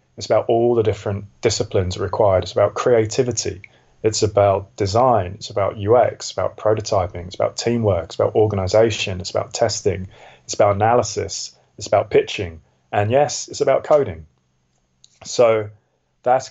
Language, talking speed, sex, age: English, 145 wpm, male, 30-49